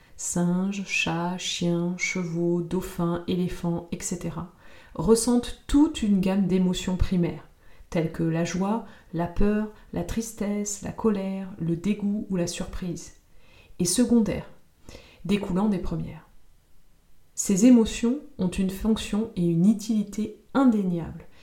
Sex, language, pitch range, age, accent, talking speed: female, French, 170-215 Hz, 30-49, French, 120 wpm